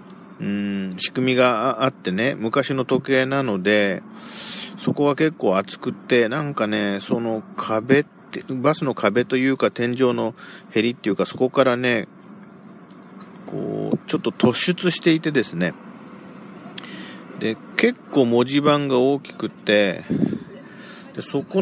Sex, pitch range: male, 110-150 Hz